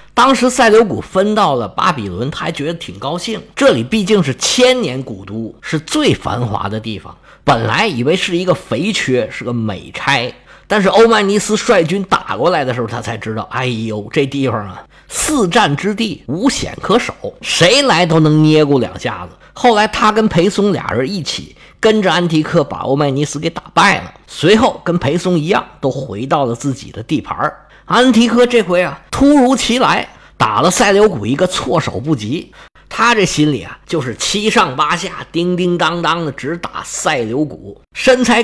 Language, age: Chinese, 50-69